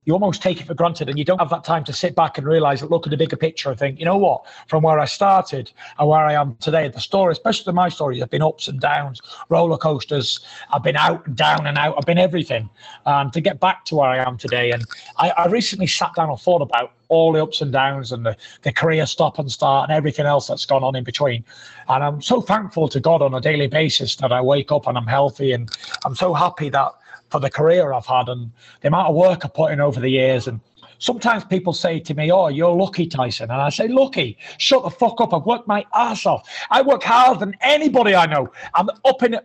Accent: British